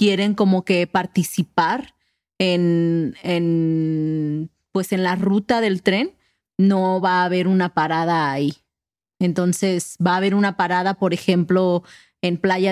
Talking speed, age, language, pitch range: 125 wpm, 30-49, English, 175-205 Hz